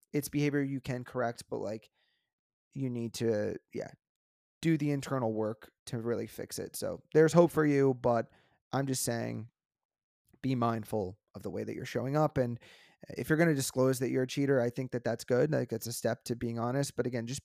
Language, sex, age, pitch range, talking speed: English, male, 30-49, 120-145 Hz, 215 wpm